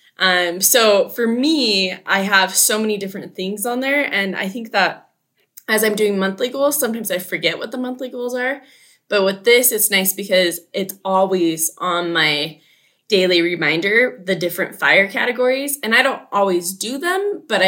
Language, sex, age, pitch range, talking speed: English, female, 20-39, 180-235 Hz, 175 wpm